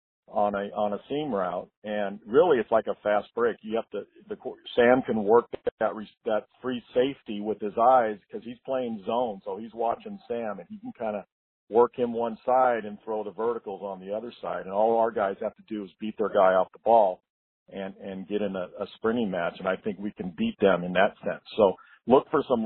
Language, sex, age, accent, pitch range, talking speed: English, male, 50-69, American, 105-125 Hz, 235 wpm